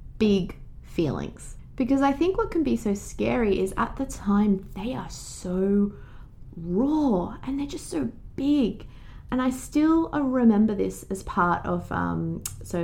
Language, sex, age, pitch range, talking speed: English, female, 20-39, 195-290 Hz, 155 wpm